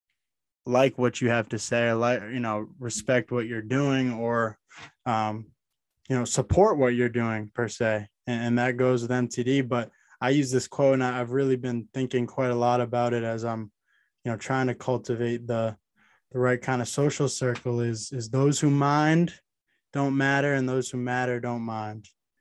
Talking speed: 190 wpm